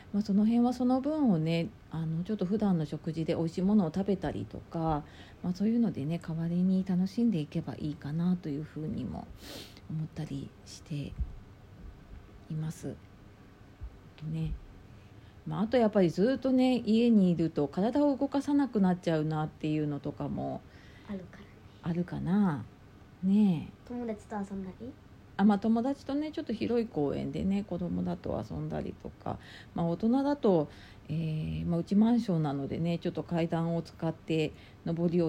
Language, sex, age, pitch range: Japanese, female, 40-59, 135-195 Hz